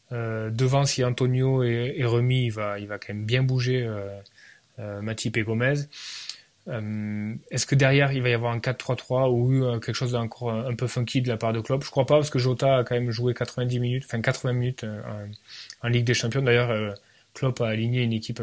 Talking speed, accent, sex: 225 wpm, French, male